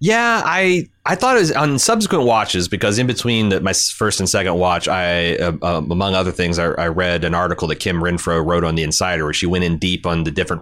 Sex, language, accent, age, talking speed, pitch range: male, English, American, 30-49, 250 wpm, 90-110 Hz